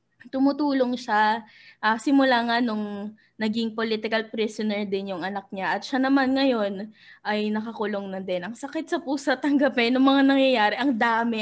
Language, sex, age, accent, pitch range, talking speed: English, female, 20-39, Filipino, 210-270 Hz, 170 wpm